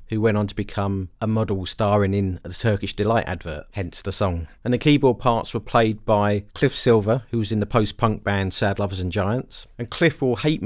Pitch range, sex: 95-115 Hz, male